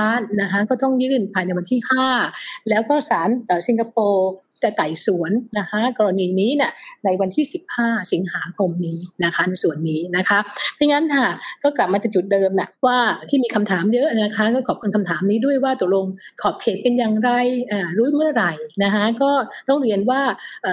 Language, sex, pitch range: Thai, female, 190-250 Hz